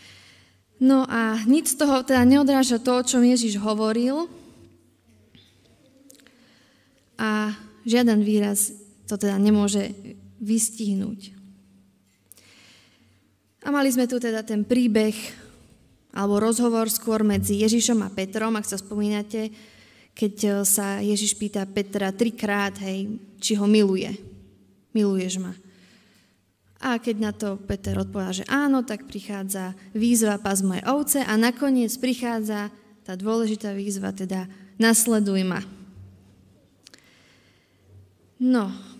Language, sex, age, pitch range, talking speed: Slovak, female, 20-39, 200-240 Hz, 110 wpm